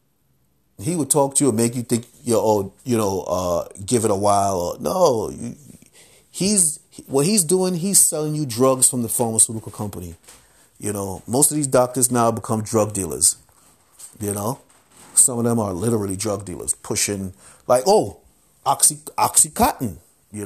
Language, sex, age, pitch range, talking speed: English, male, 30-49, 100-130 Hz, 170 wpm